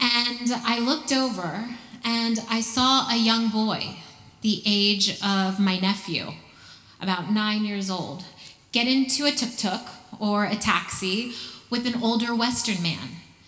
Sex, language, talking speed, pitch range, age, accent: female, English, 140 wpm, 185-230 Hz, 20-39, American